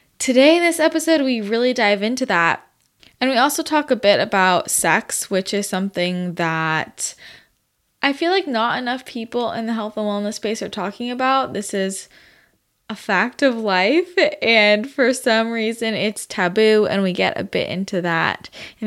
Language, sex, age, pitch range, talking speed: English, female, 10-29, 185-225 Hz, 180 wpm